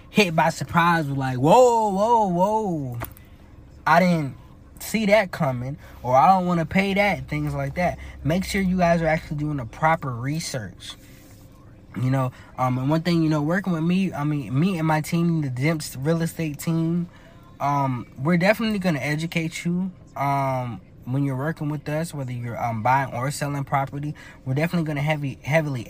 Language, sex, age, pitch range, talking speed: English, male, 20-39, 125-165 Hz, 185 wpm